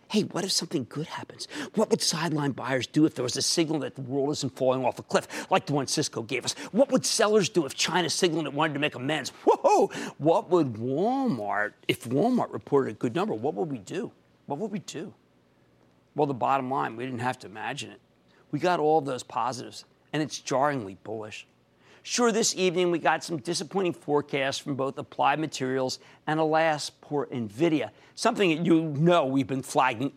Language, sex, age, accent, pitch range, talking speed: English, male, 50-69, American, 130-185 Hz, 205 wpm